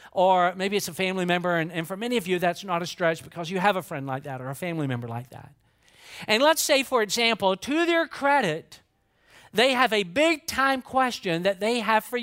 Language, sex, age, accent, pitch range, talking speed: English, male, 50-69, American, 175-235 Hz, 225 wpm